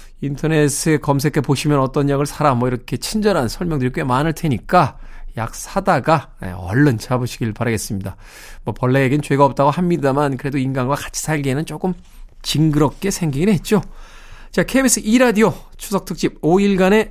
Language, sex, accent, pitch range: Korean, male, native, 140-225 Hz